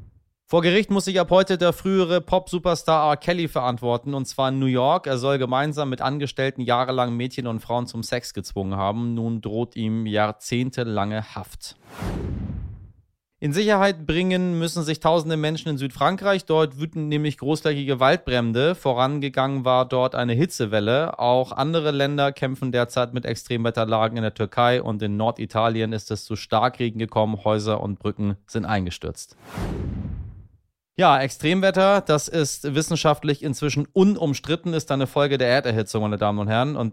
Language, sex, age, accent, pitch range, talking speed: German, male, 30-49, German, 115-145 Hz, 155 wpm